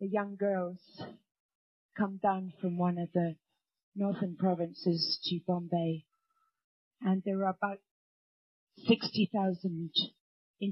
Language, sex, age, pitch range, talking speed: English, female, 40-59, 175-205 Hz, 105 wpm